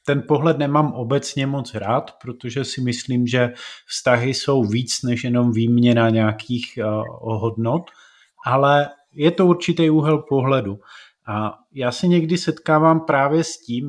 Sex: male